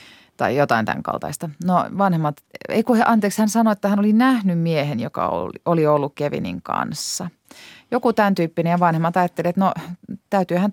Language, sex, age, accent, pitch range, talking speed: Finnish, female, 30-49, native, 155-195 Hz, 175 wpm